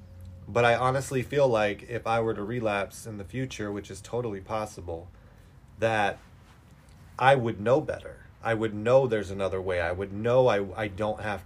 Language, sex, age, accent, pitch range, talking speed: English, male, 30-49, American, 95-115 Hz, 185 wpm